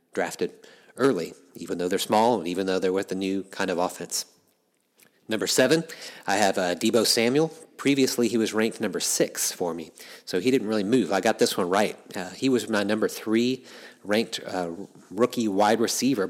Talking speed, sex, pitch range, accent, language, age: 190 wpm, male, 95-120 Hz, American, English, 40-59